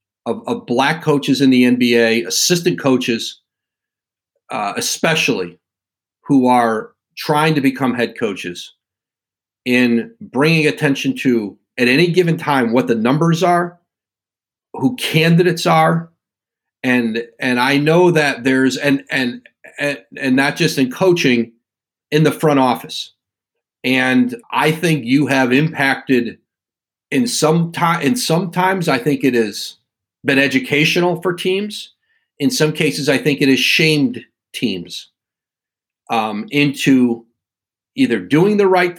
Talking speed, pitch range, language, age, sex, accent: 130 wpm, 125-155 Hz, English, 40-59, male, American